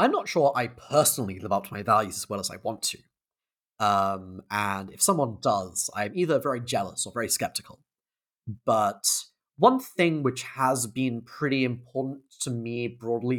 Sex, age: male, 30-49